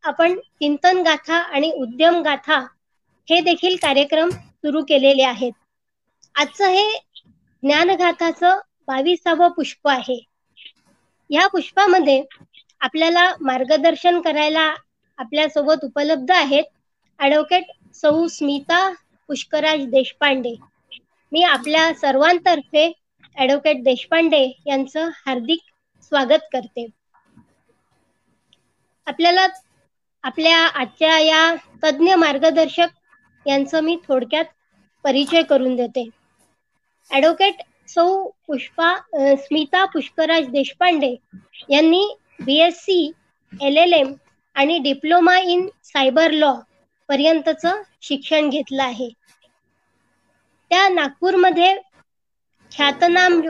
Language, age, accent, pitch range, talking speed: Marathi, 20-39, native, 280-345 Hz, 65 wpm